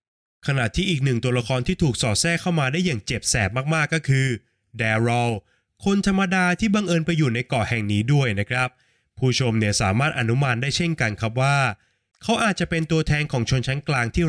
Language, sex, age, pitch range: Thai, male, 20-39, 115-160 Hz